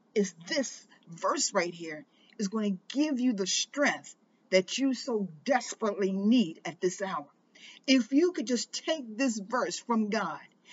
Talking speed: 160 wpm